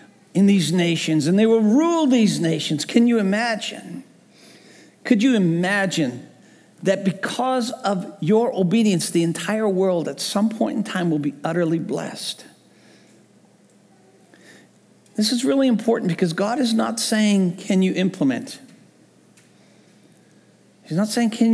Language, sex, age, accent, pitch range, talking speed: English, male, 50-69, American, 195-265 Hz, 135 wpm